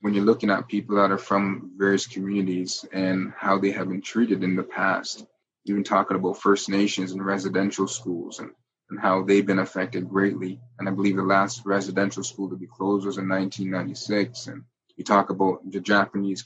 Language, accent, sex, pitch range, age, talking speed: English, American, male, 95-105 Hz, 20-39, 195 wpm